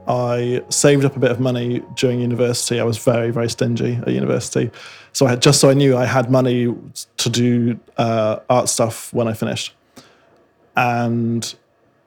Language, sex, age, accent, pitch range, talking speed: English, male, 20-39, British, 115-130 Hz, 175 wpm